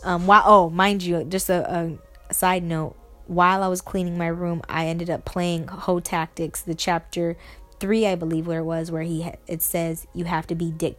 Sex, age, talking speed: female, 10-29, 215 wpm